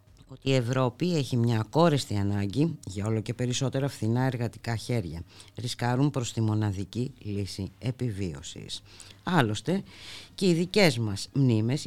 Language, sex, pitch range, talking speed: Greek, female, 105-140 Hz, 130 wpm